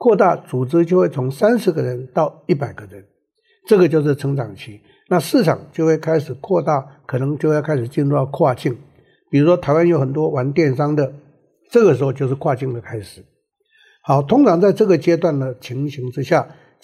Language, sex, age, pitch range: Chinese, male, 60-79, 135-175 Hz